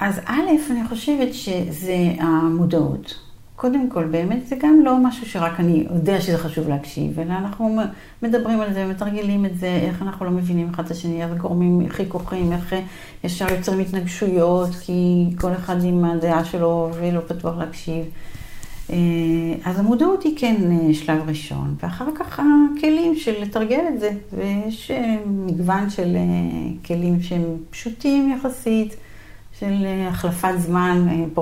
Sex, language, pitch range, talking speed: female, Hebrew, 165-200 Hz, 140 wpm